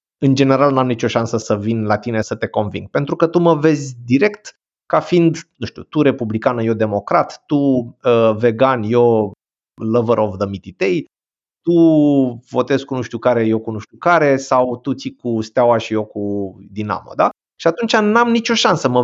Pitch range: 120-175 Hz